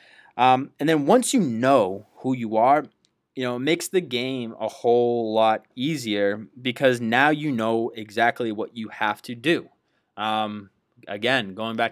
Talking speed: 165 wpm